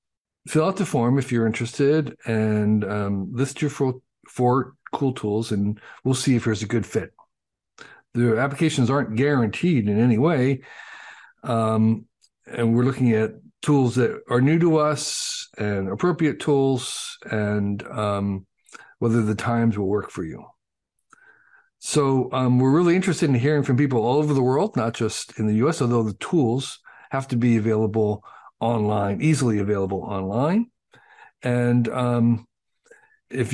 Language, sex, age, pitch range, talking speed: English, male, 50-69, 110-145 Hz, 150 wpm